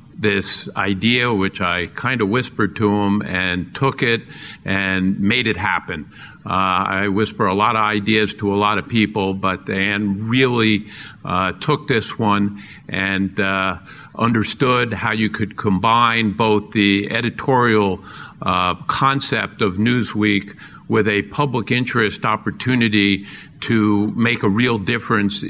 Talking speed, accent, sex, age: 140 wpm, American, male, 50-69